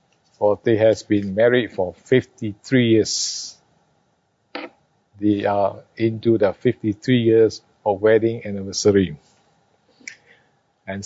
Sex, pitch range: male, 105-130 Hz